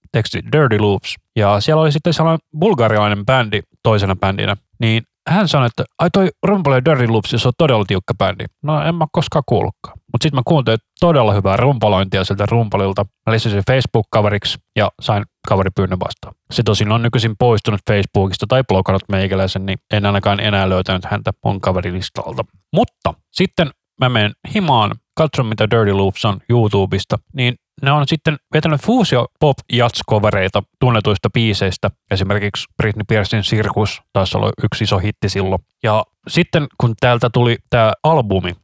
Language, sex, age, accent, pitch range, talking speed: Finnish, male, 20-39, native, 100-135 Hz, 155 wpm